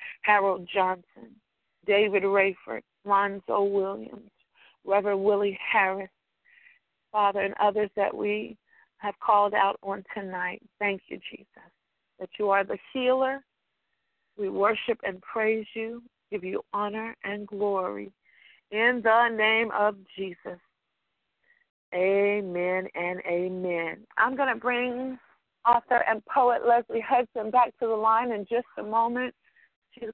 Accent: American